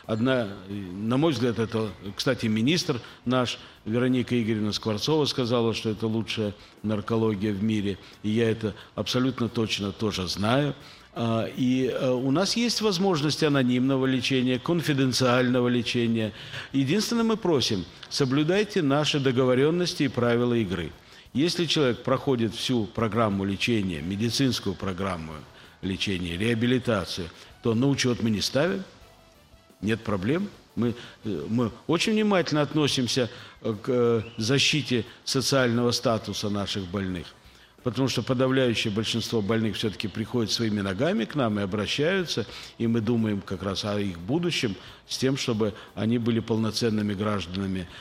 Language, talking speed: Russian, 125 wpm